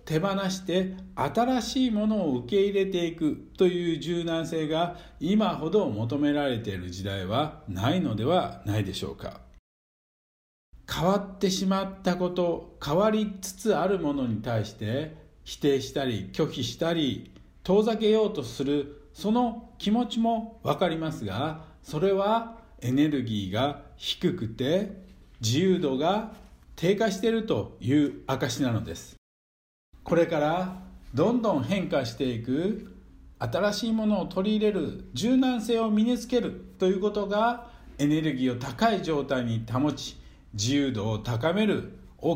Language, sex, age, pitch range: Japanese, male, 60-79, 120-200 Hz